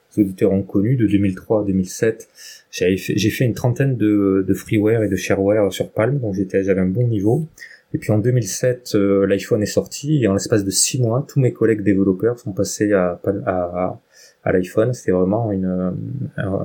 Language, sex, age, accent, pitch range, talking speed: French, male, 20-39, French, 100-120 Hz, 200 wpm